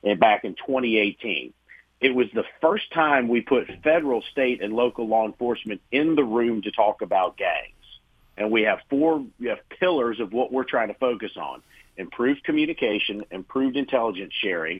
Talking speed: 175 wpm